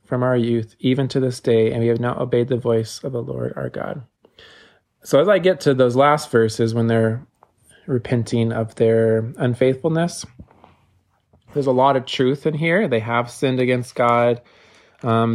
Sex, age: male, 20-39